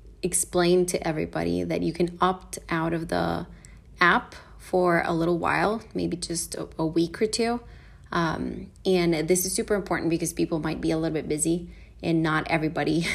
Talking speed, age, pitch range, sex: 175 wpm, 30-49, 150-185 Hz, female